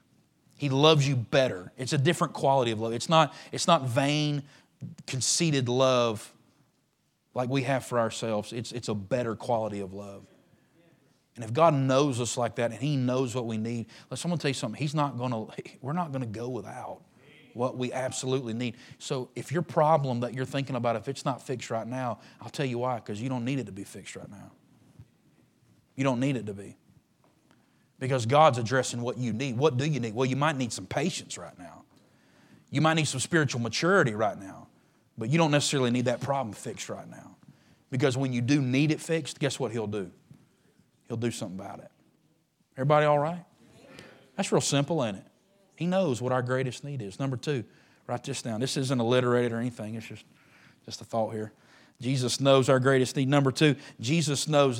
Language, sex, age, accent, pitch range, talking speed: English, male, 30-49, American, 120-145 Hz, 200 wpm